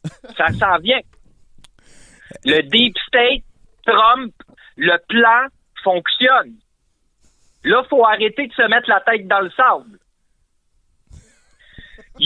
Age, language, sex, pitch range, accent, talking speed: 50-69, French, male, 200-260 Hz, French, 110 wpm